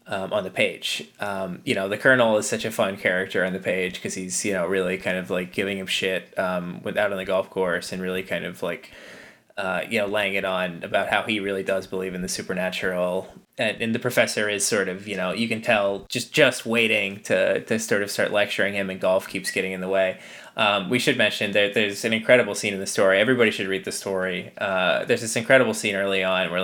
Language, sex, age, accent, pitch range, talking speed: English, male, 20-39, American, 95-105 Hz, 245 wpm